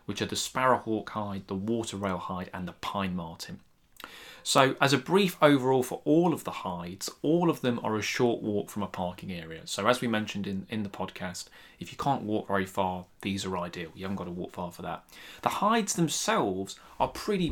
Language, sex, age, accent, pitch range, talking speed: English, male, 20-39, British, 100-115 Hz, 220 wpm